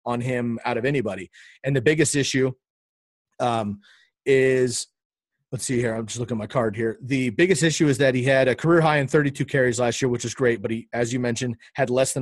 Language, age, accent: English, 30-49, American